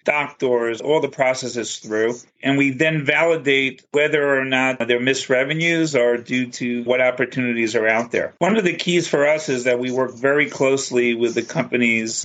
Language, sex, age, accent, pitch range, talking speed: English, male, 40-59, American, 120-135 Hz, 185 wpm